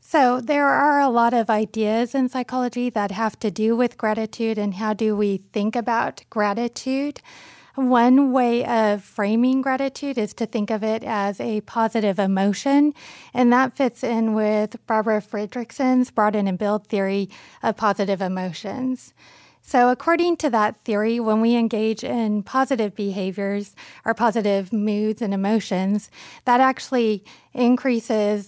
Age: 30-49